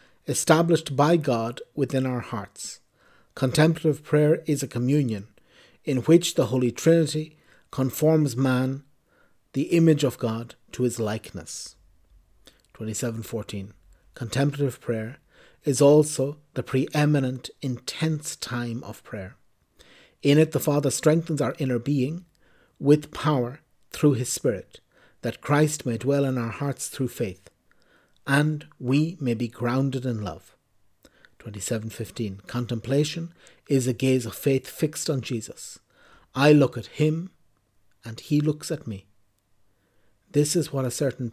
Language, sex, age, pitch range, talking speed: English, male, 60-79, 115-145 Hz, 130 wpm